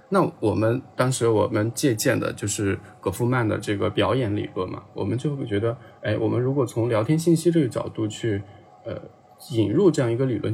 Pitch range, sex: 105-135 Hz, male